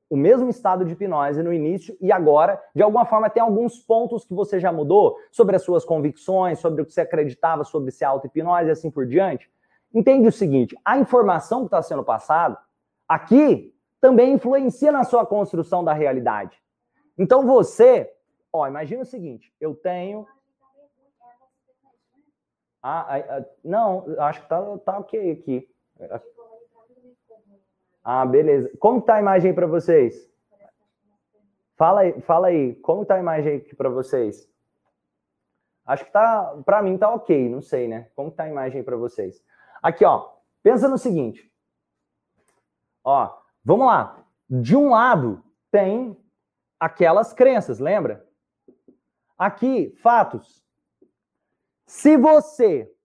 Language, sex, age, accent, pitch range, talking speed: Portuguese, male, 20-39, Brazilian, 160-265 Hz, 135 wpm